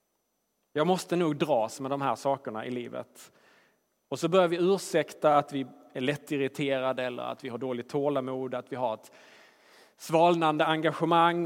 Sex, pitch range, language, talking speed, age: male, 135-180 Hz, Swedish, 170 wpm, 30-49